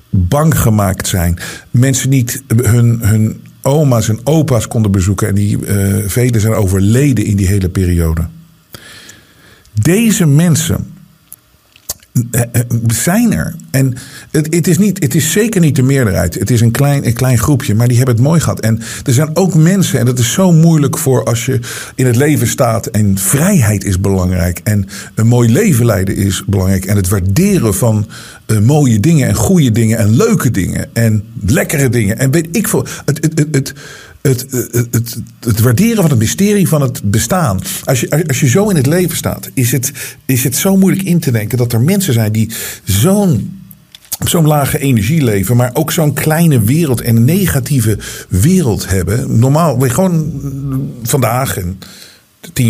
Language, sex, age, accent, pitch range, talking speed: Dutch, male, 50-69, Dutch, 110-150 Hz, 180 wpm